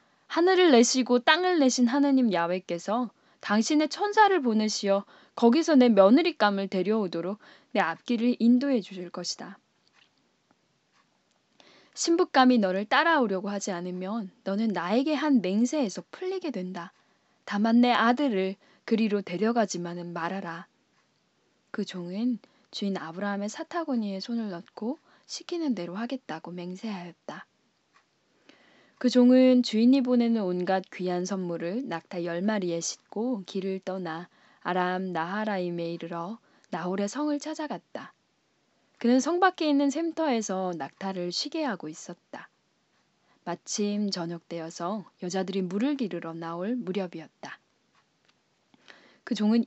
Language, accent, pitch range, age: Korean, native, 185-250 Hz, 10-29